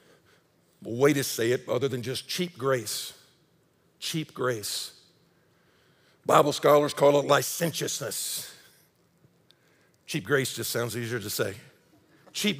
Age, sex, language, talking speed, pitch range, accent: 50-69, male, English, 115 wpm, 160-235 Hz, American